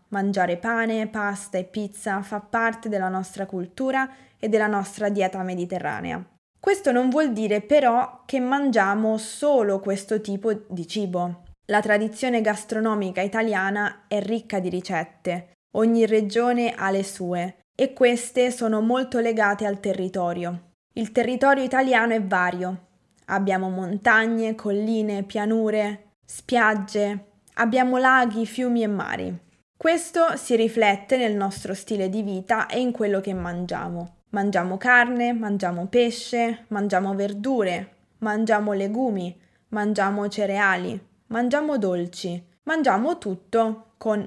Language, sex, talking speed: Italian, female, 120 wpm